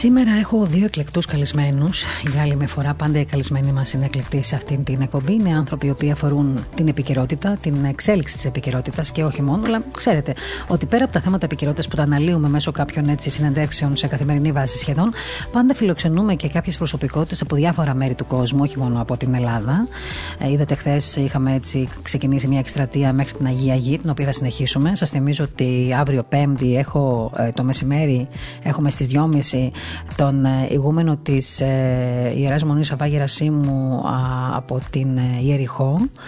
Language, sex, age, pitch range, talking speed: Greek, female, 30-49, 135-150 Hz, 170 wpm